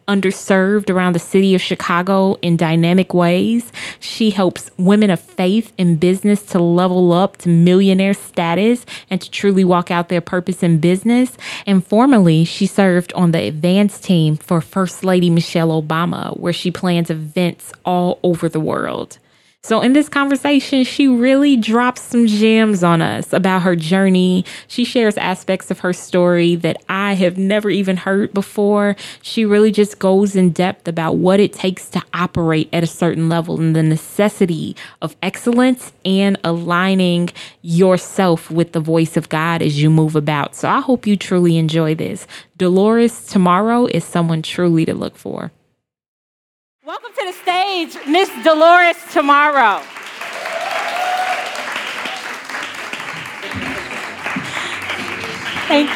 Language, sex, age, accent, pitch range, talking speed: English, female, 20-39, American, 175-235 Hz, 145 wpm